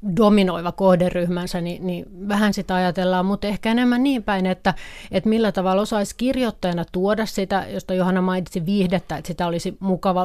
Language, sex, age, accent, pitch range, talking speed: Finnish, female, 30-49, native, 180-200 Hz, 165 wpm